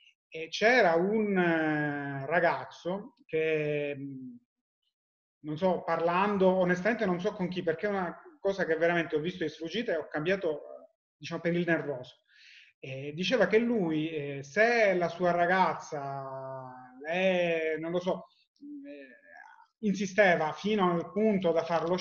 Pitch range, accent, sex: 160-200 Hz, native, male